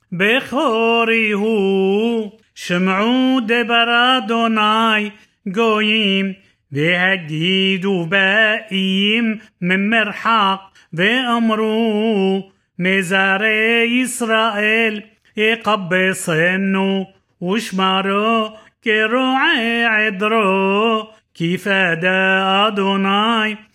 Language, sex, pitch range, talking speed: Hebrew, male, 195-225 Hz, 50 wpm